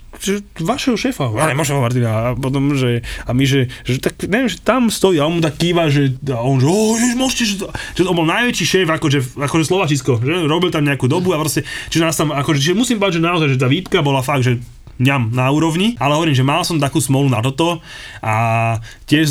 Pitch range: 120-160 Hz